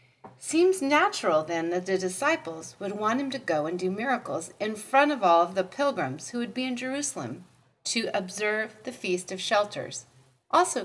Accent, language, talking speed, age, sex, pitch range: American, English, 185 wpm, 40-59, female, 175-260 Hz